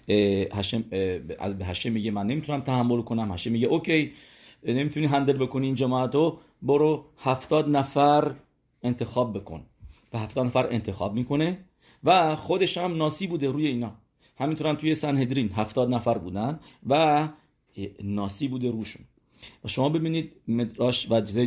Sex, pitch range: male, 110-140 Hz